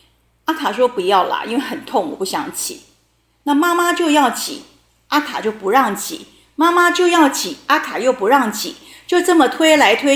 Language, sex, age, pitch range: Chinese, female, 30-49, 230-330 Hz